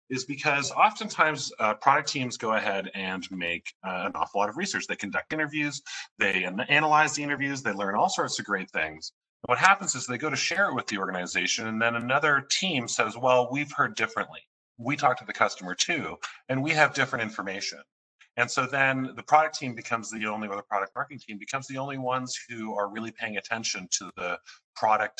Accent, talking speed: American, 205 wpm